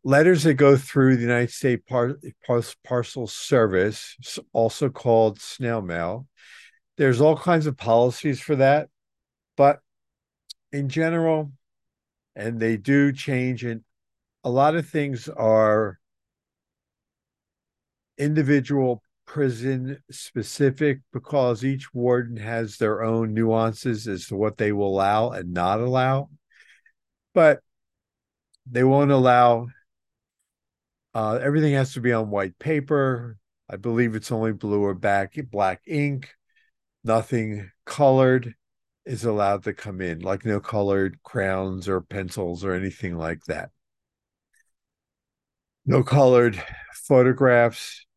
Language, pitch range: English, 105-135 Hz